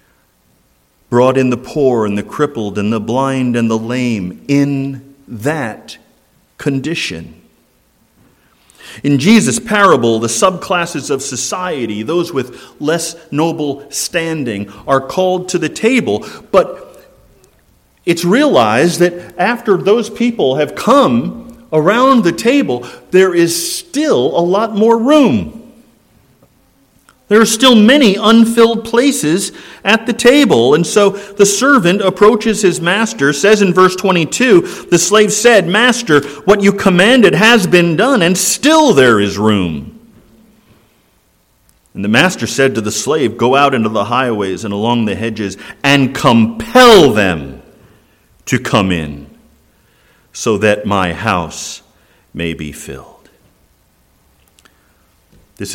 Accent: American